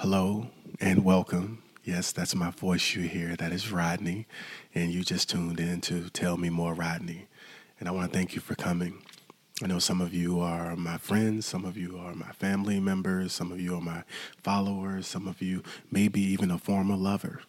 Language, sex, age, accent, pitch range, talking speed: English, male, 30-49, American, 85-95 Hz, 200 wpm